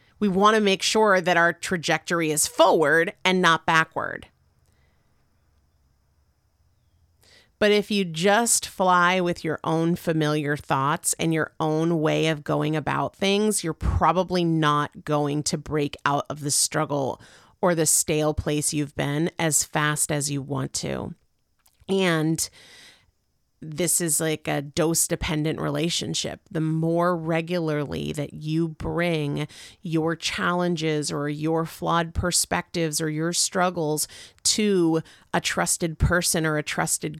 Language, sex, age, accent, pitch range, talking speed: English, female, 40-59, American, 150-180 Hz, 135 wpm